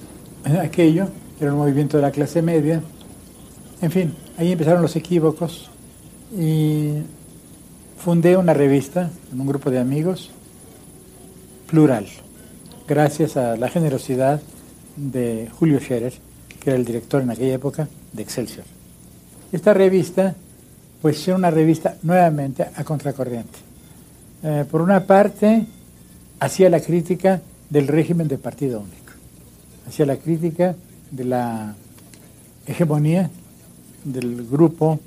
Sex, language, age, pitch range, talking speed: male, Spanish, 60-79, 125-165 Hz, 120 wpm